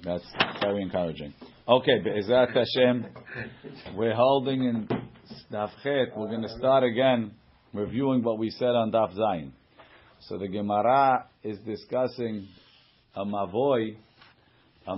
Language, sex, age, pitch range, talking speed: English, male, 50-69, 105-125 Hz, 120 wpm